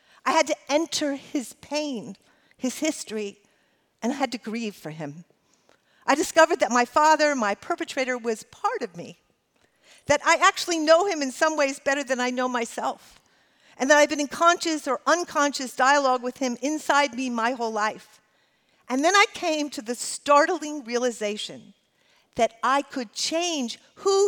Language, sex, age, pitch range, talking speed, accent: English, female, 50-69, 230-320 Hz, 170 wpm, American